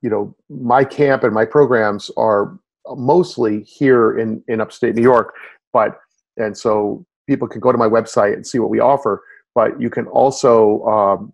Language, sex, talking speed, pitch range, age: English, male, 180 wpm, 105-130 Hz, 40-59